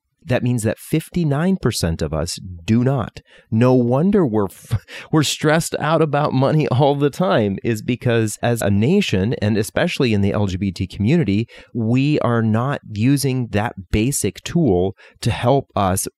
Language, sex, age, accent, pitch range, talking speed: English, male, 30-49, American, 100-125 Hz, 150 wpm